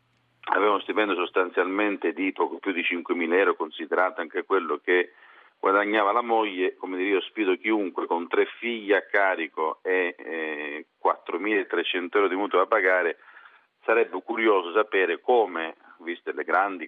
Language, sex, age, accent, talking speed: Italian, male, 40-59, native, 145 wpm